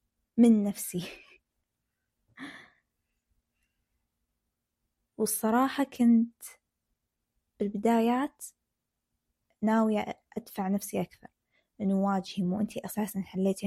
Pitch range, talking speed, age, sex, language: 200-245 Hz, 65 wpm, 20-39, female, Arabic